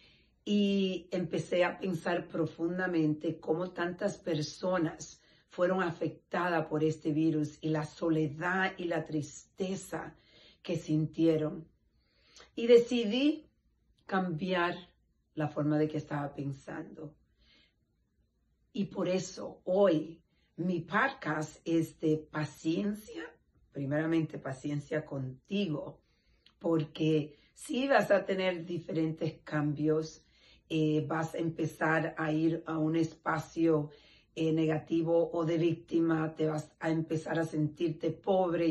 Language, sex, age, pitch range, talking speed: Spanish, female, 40-59, 155-180 Hz, 110 wpm